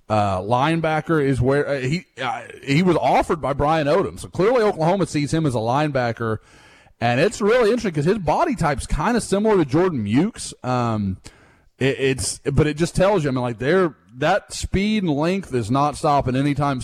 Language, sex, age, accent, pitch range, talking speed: English, male, 30-49, American, 120-150 Hz, 195 wpm